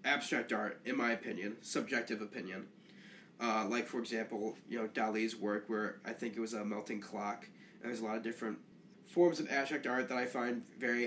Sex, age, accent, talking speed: male, 20-39, American, 200 wpm